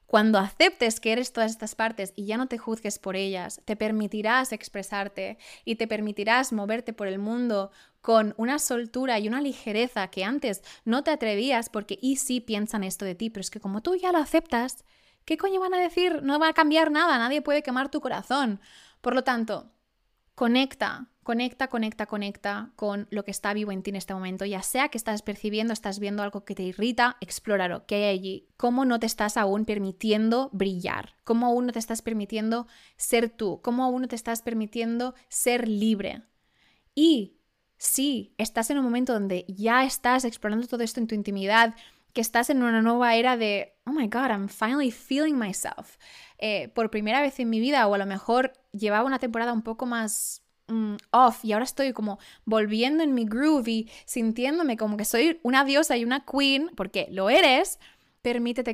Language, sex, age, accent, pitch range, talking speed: Spanish, female, 20-39, Spanish, 210-255 Hz, 195 wpm